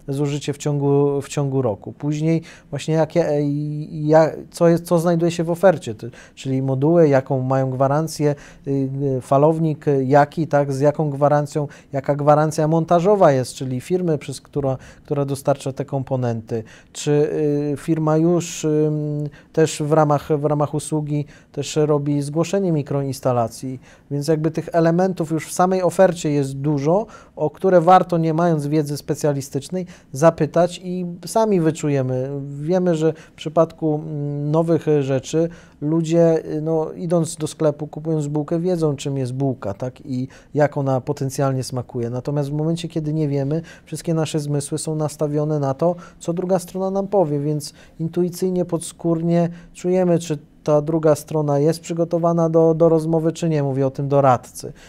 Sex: male